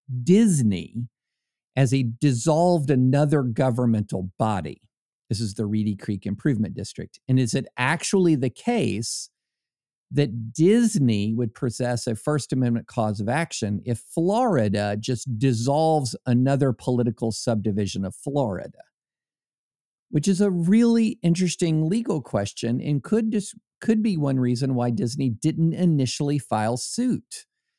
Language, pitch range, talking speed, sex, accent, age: English, 115-170 Hz, 125 wpm, male, American, 50-69